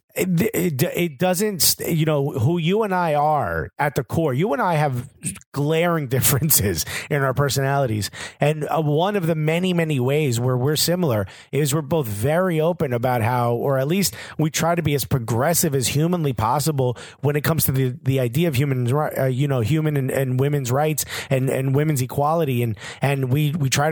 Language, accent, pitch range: English, American, 130-160 Hz